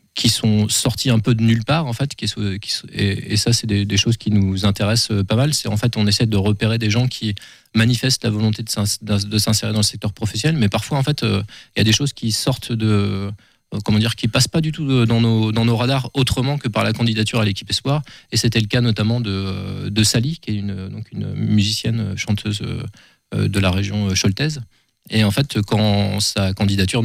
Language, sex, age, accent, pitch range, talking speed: French, male, 20-39, French, 105-120 Hz, 220 wpm